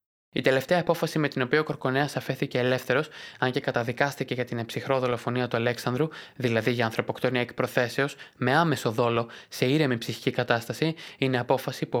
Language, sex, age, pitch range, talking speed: Greek, male, 20-39, 125-140 Hz, 160 wpm